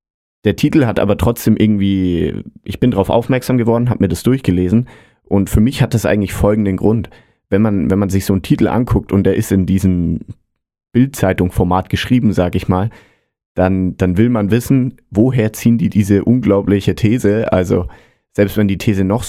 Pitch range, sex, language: 95-110 Hz, male, German